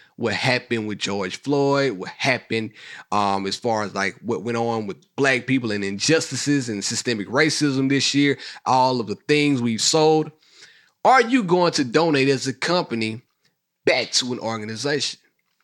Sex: male